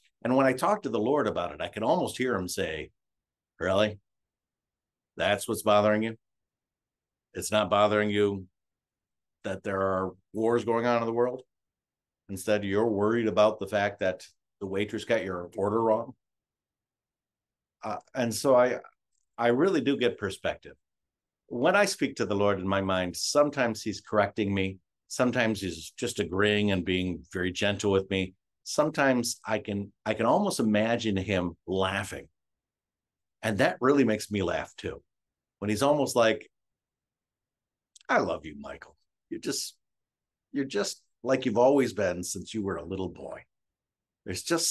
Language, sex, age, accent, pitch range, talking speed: English, male, 50-69, American, 95-115 Hz, 160 wpm